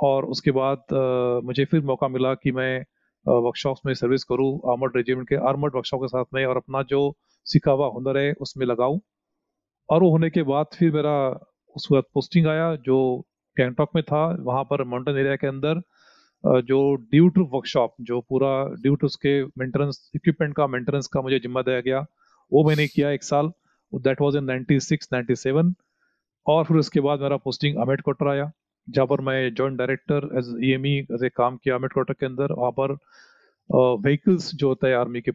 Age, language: 30-49, Hindi